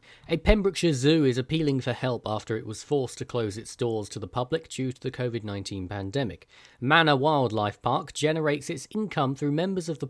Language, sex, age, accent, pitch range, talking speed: English, male, 40-59, British, 110-145 Hz, 195 wpm